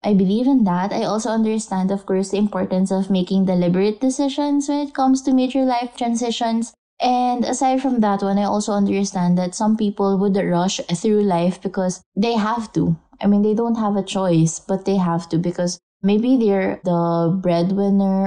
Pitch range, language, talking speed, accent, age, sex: 180-220 Hz, English, 185 wpm, Filipino, 20-39, female